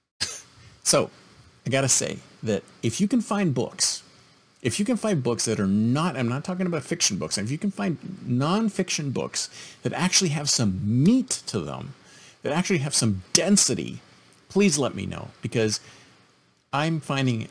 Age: 50-69